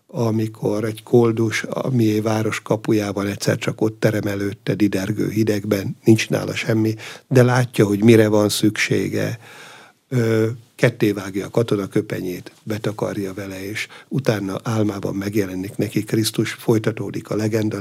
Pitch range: 105-125 Hz